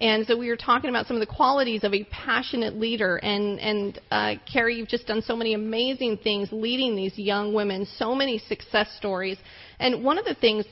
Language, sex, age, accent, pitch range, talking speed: English, female, 30-49, American, 200-235 Hz, 215 wpm